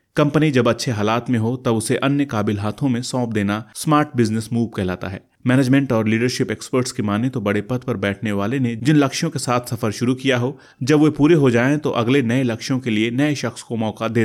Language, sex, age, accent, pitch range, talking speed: Hindi, male, 30-49, native, 110-135 Hz, 235 wpm